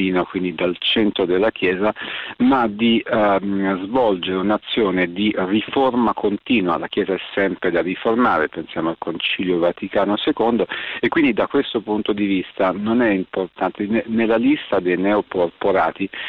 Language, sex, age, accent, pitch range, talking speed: Italian, male, 40-59, native, 95-110 Hz, 140 wpm